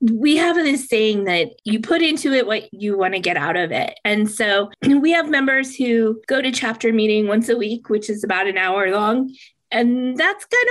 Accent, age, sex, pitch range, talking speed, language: American, 20-39, female, 185-245 Hz, 220 wpm, English